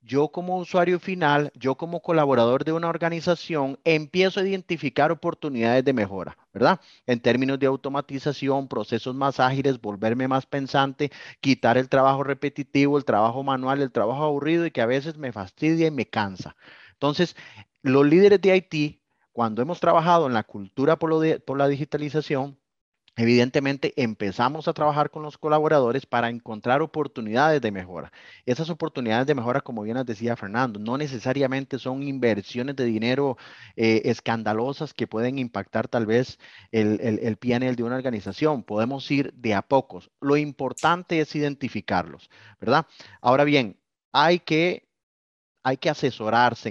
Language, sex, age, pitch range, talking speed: English, male, 30-49, 115-150 Hz, 155 wpm